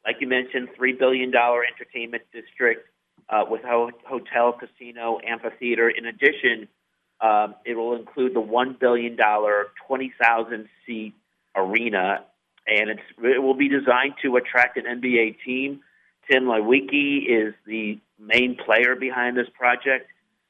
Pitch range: 110-125 Hz